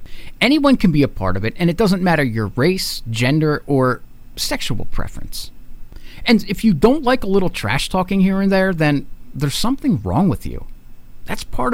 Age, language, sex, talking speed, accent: 50-69, English, male, 185 wpm, American